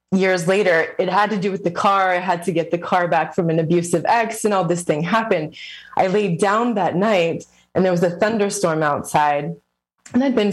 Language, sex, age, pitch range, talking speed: English, female, 20-39, 165-190 Hz, 220 wpm